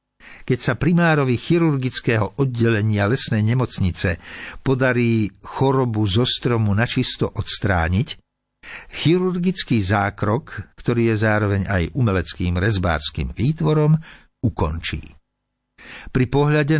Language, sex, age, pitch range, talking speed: Slovak, male, 60-79, 95-125 Hz, 90 wpm